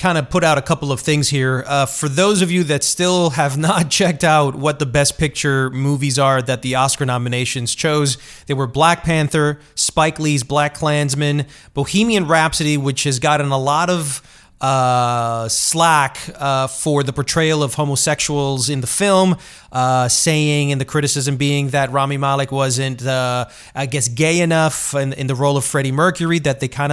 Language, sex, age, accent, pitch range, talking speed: English, male, 30-49, American, 135-175 Hz, 185 wpm